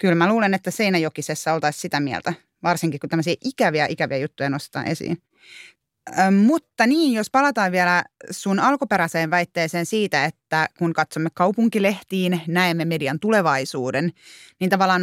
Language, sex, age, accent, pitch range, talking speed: Finnish, female, 30-49, native, 160-195 Hz, 140 wpm